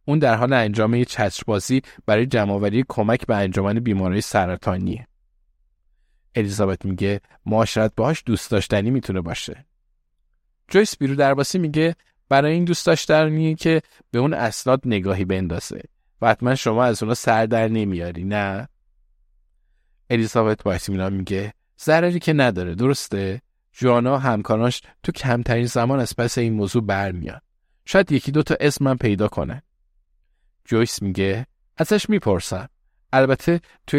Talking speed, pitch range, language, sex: 130 wpm, 100-140 Hz, Persian, male